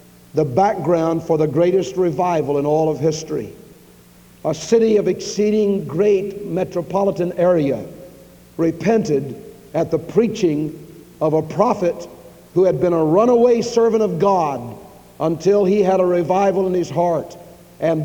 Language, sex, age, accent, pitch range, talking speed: English, male, 60-79, American, 160-195 Hz, 135 wpm